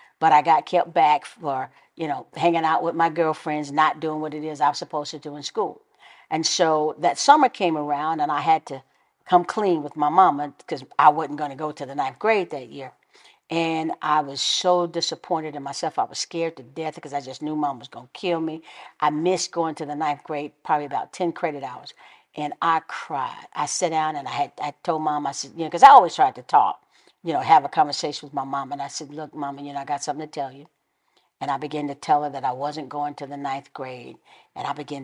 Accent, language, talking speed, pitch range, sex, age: American, English, 250 wpm, 145-165 Hz, female, 50-69